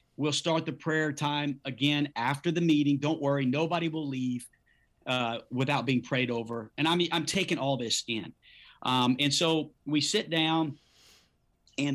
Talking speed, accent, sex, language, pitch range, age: 170 wpm, American, male, English, 135-165 Hz, 40-59